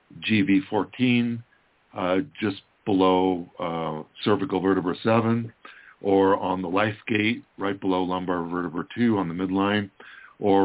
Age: 50-69